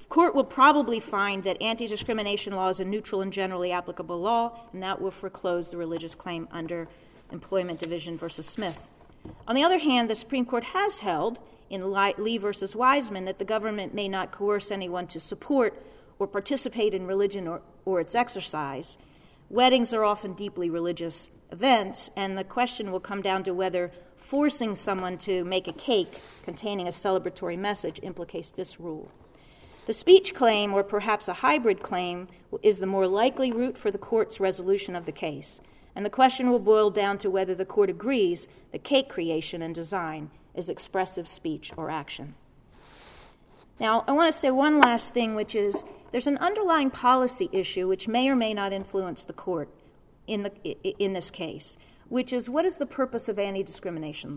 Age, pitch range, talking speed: 40-59, 180-235 Hz, 175 wpm